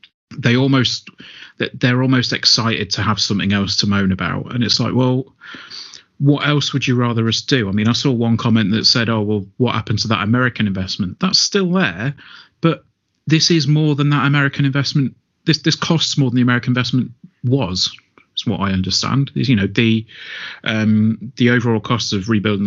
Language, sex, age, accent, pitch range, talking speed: English, male, 30-49, British, 105-135 Hz, 195 wpm